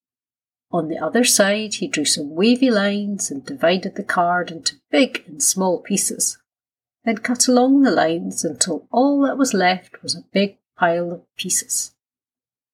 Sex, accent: female, British